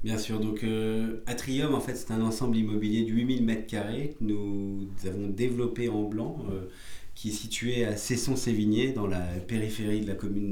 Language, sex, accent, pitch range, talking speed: French, male, French, 105-125 Hz, 185 wpm